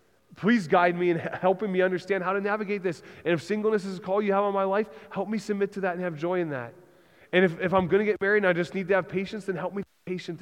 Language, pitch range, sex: English, 175-215 Hz, male